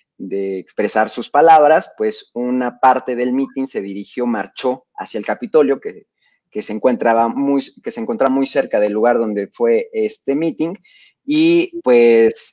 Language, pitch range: Spanish, 115-160 Hz